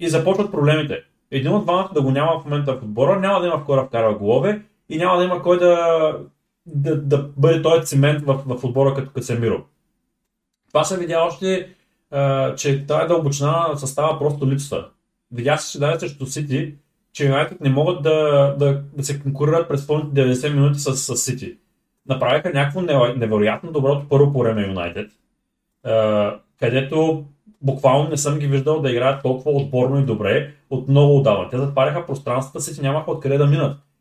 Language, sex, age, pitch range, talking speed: Bulgarian, male, 30-49, 135-160 Hz, 170 wpm